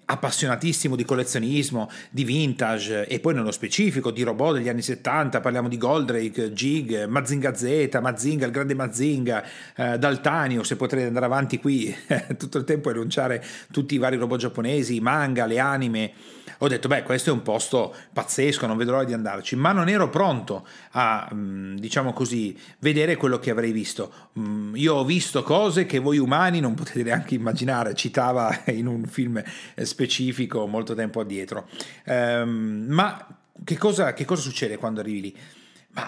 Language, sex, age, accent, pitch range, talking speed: Italian, male, 40-59, native, 115-145 Hz, 175 wpm